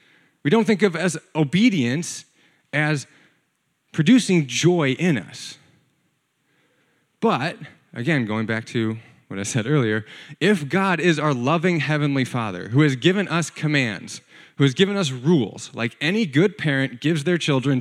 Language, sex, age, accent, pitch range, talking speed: English, male, 30-49, American, 135-175 Hz, 150 wpm